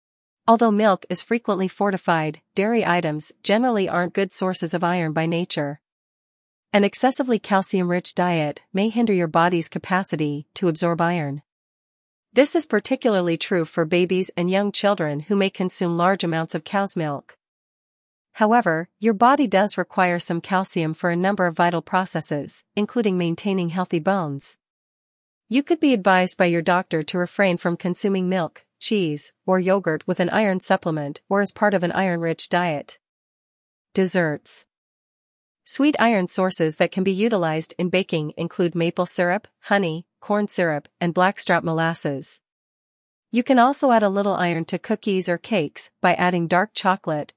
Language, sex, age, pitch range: English, female, 40-59, 165-200 Hz